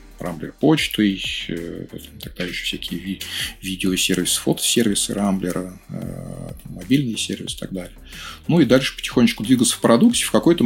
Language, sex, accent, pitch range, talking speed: Russian, male, native, 90-105 Hz, 125 wpm